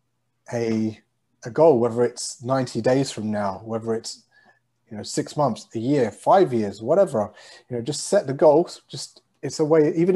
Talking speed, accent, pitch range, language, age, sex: 185 wpm, British, 115-140 Hz, English, 30-49, male